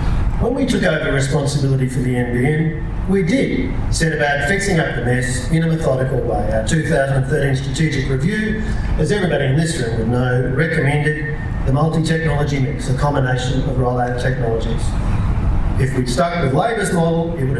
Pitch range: 130-160 Hz